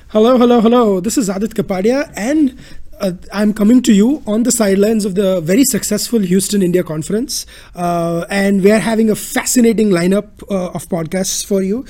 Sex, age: male, 20-39